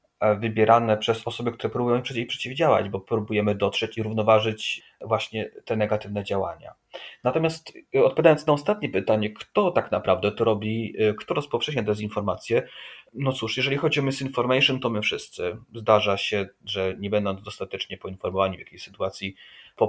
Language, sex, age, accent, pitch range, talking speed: Polish, male, 30-49, native, 95-115 Hz, 145 wpm